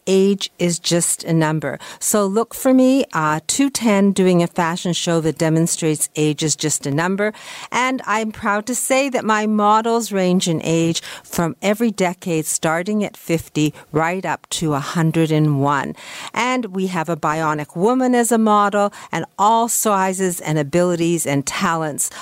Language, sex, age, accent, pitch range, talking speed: English, female, 50-69, American, 155-195 Hz, 160 wpm